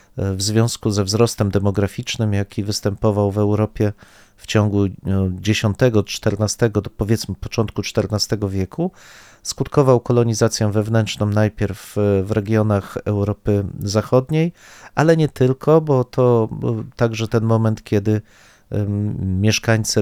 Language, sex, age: Polish, male, 40-59